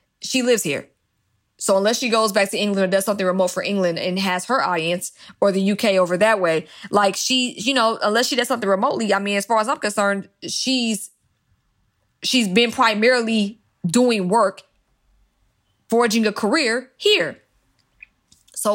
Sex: female